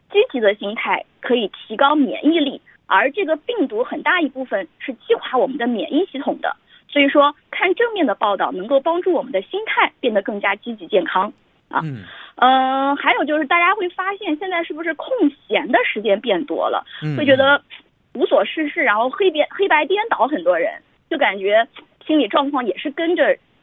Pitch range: 250-360 Hz